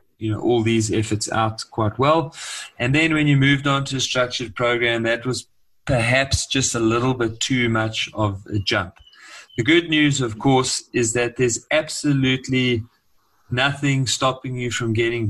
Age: 30-49